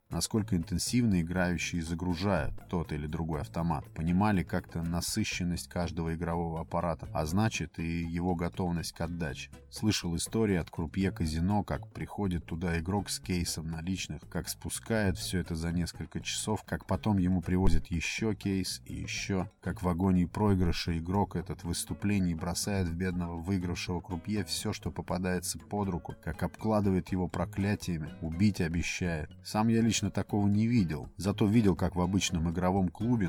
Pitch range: 85-100 Hz